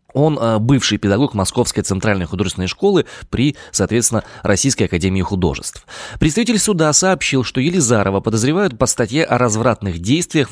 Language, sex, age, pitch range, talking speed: Russian, male, 20-39, 95-135 Hz, 130 wpm